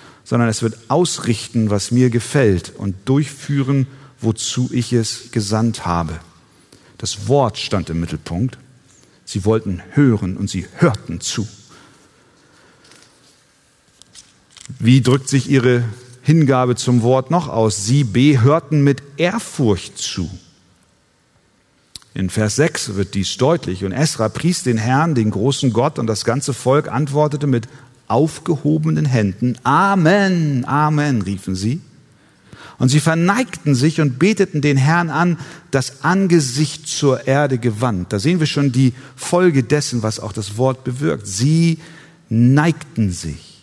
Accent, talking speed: German, 135 wpm